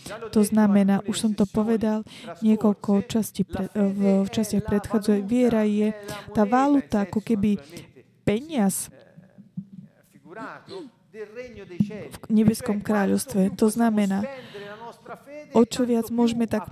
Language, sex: Slovak, female